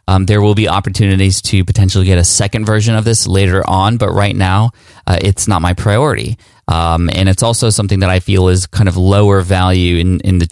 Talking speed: 220 wpm